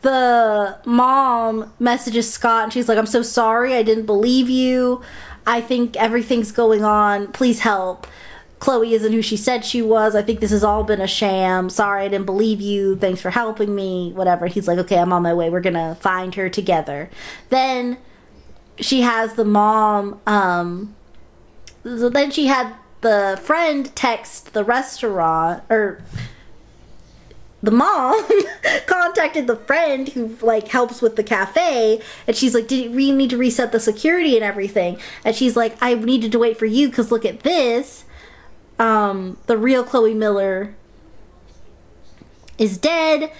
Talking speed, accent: 160 wpm, American